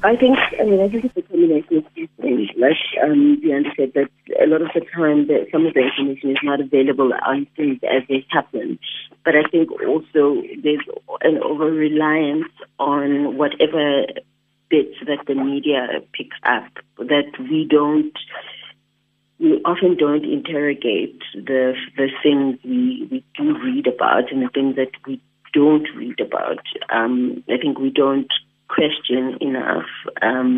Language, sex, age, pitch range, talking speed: English, female, 30-49, 135-160 Hz, 155 wpm